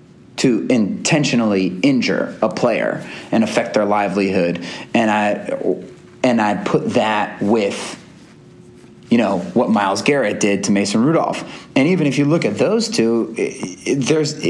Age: 30-49